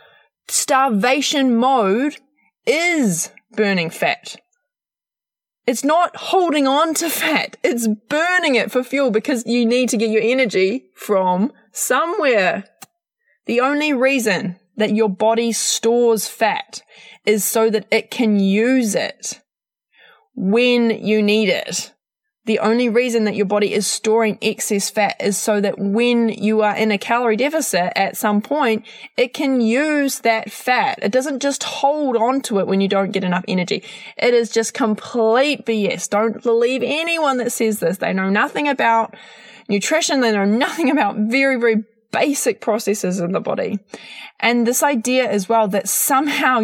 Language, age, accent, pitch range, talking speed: English, 20-39, Australian, 210-265 Hz, 155 wpm